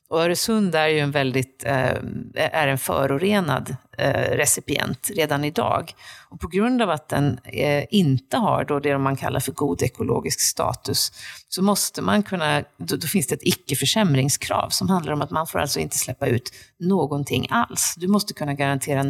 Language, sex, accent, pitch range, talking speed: Swedish, female, native, 140-195 Hz, 165 wpm